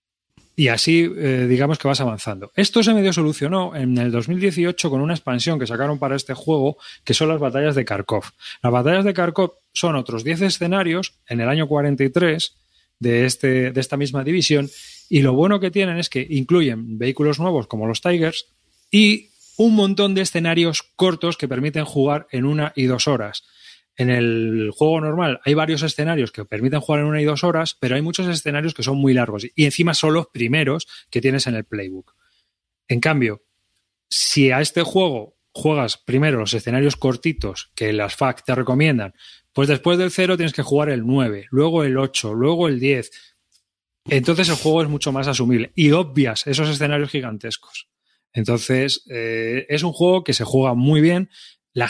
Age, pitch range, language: 30-49, 125-160 Hz, Spanish